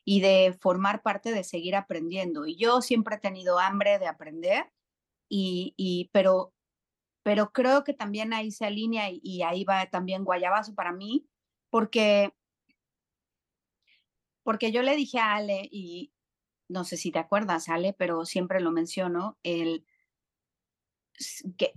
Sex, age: female, 40-59